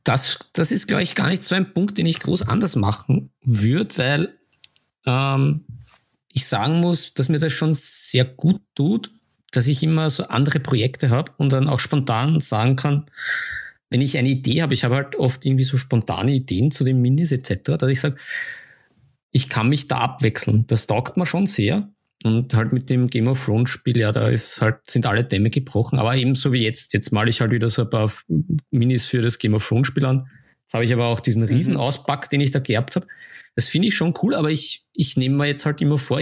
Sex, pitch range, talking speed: male, 120-155 Hz, 220 wpm